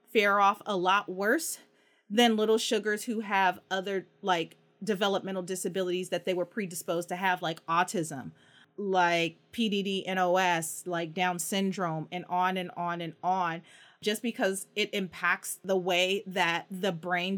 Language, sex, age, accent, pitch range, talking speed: English, female, 30-49, American, 180-235 Hz, 150 wpm